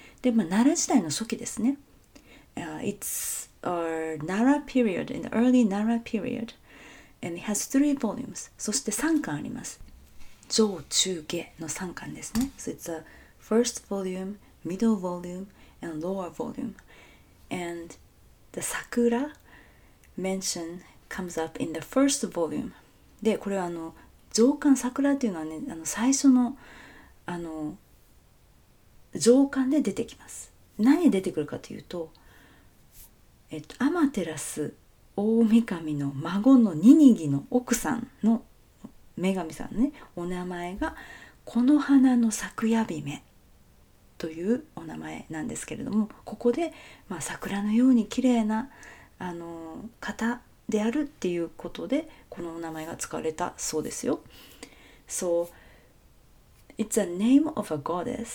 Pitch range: 175-250 Hz